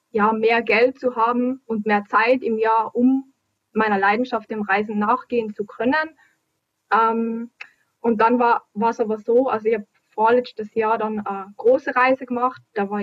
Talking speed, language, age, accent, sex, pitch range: 170 wpm, German, 20-39, German, female, 225-260 Hz